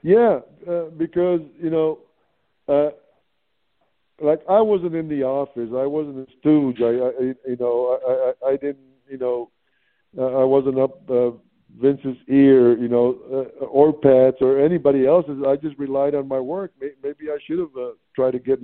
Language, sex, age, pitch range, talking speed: English, male, 50-69, 130-155 Hz, 175 wpm